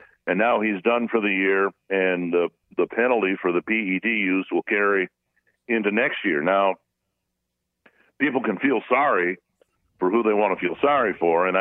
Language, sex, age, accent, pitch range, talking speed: English, male, 60-79, American, 90-115 Hz, 175 wpm